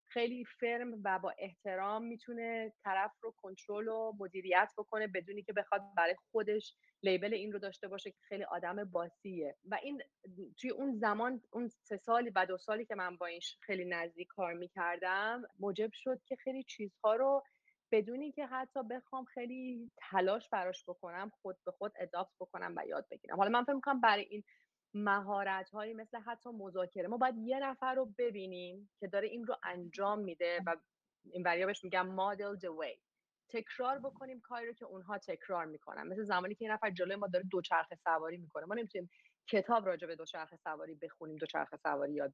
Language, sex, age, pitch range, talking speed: Persian, female, 30-49, 185-235 Hz, 180 wpm